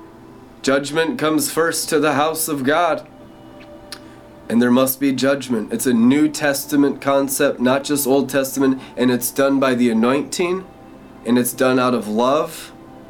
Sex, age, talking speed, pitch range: male, 20-39, 155 wpm, 125-145 Hz